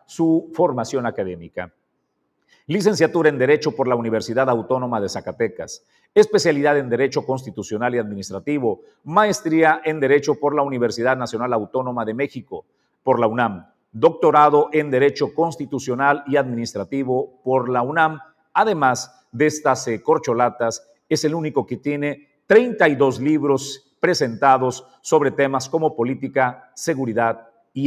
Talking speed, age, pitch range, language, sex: 125 wpm, 50-69, 115-150 Hz, Spanish, male